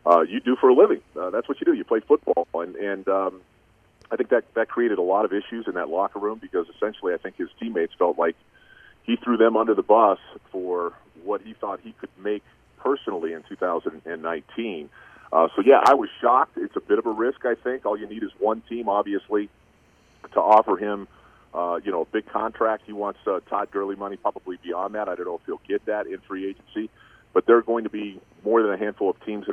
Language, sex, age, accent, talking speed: English, male, 40-59, American, 235 wpm